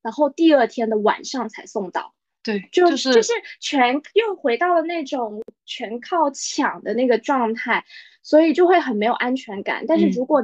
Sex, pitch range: female, 225-305 Hz